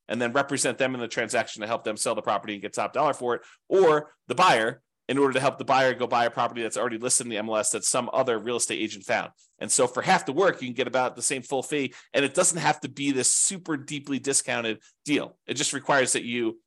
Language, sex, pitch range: English, male, 120-150 Hz